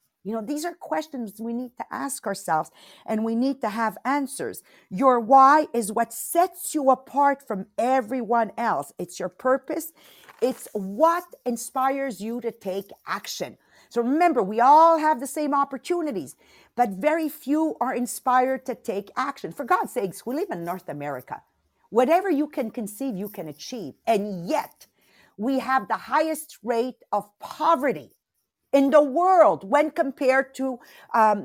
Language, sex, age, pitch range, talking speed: English, female, 50-69, 220-295 Hz, 160 wpm